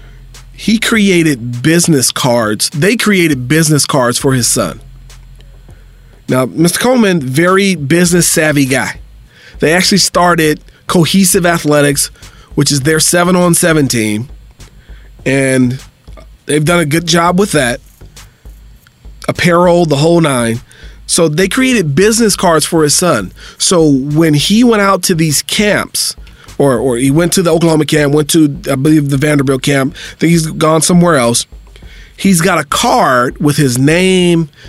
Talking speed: 150 wpm